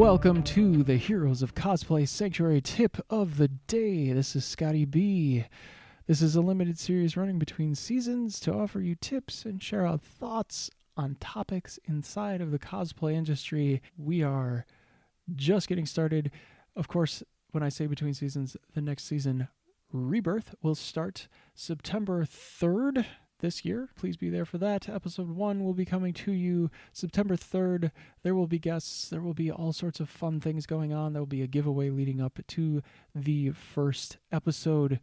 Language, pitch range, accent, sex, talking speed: English, 135-175 Hz, American, male, 170 wpm